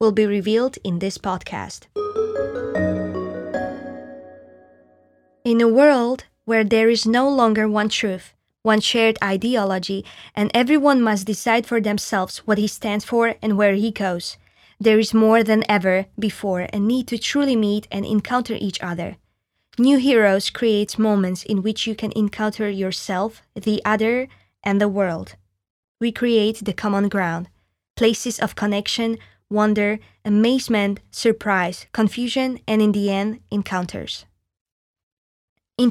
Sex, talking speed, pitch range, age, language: female, 135 wpm, 195-230 Hz, 20-39, Slovak